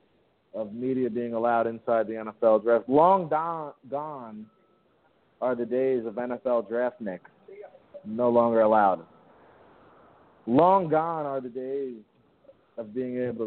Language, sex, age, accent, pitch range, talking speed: English, male, 40-59, American, 110-125 Hz, 125 wpm